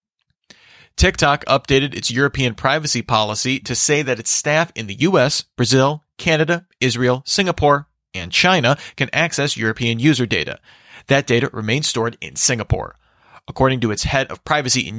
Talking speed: 150 wpm